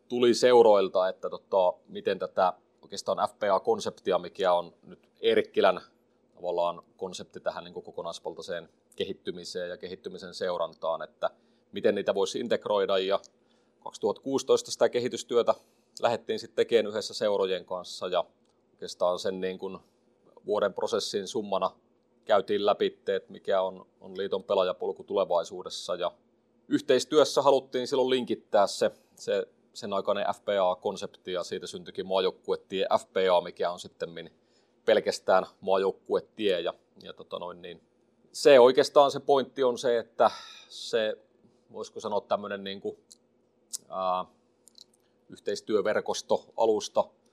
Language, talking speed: Finnish, 115 wpm